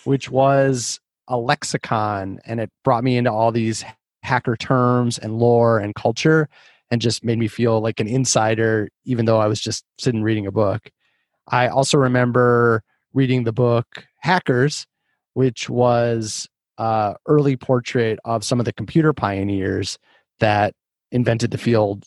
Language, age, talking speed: English, 30-49, 150 wpm